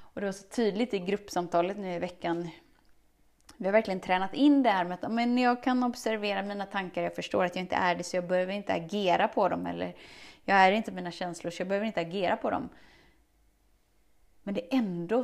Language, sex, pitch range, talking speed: Swedish, female, 170-205 Hz, 215 wpm